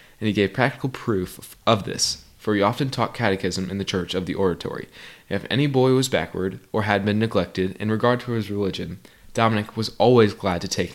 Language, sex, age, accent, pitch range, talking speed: English, male, 20-39, American, 95-120 Hz, 210 wpm